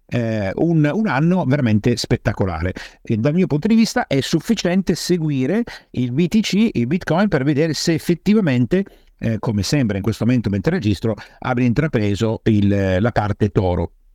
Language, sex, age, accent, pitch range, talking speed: Italian, male, 50-69, native, 105-150 Hz, 155 wpm